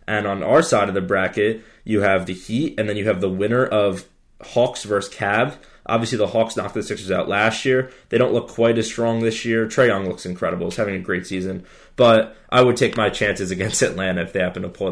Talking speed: 240 wpm